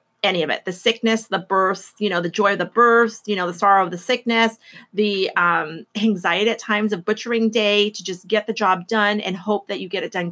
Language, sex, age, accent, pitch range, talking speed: English, female, 30-49, American, 185-230 Hz, 245 wpm